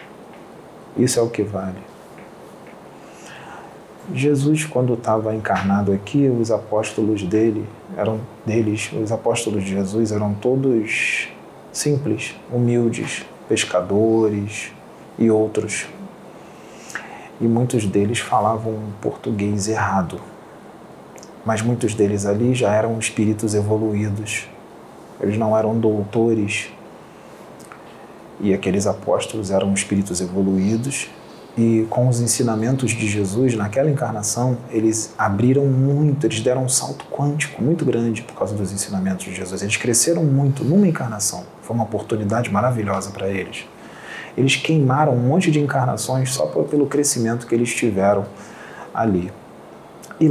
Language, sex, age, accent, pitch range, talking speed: Portuguese, male, 40-59, Brazilian, 105-125 Hz, 120 wpm